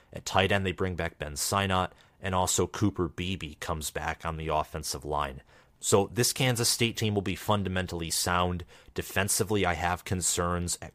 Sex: male